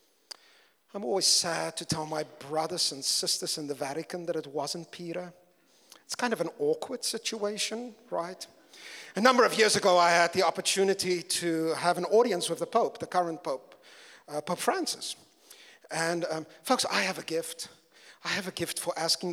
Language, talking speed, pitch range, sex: English, 180 wpm, 170-230 Hz, male